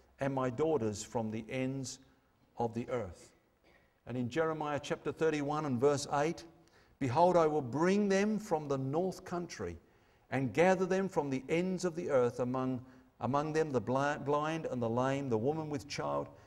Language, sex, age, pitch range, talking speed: English, male, 50-69, 115-160 Hz, 170 wpm